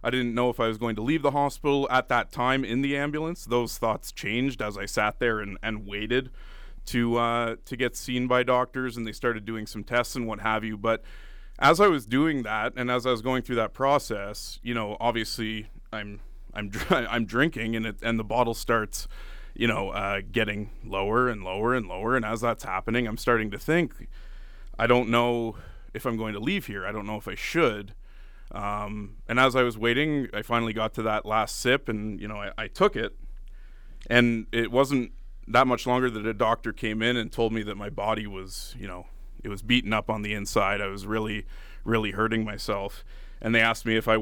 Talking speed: 220 wpm